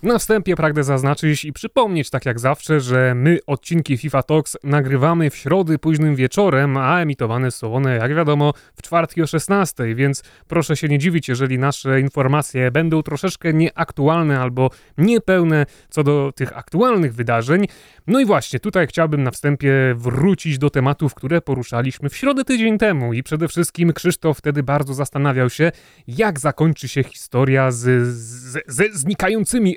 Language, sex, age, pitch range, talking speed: Polish, male, 30-49, 130-160 Hz, 160 wpm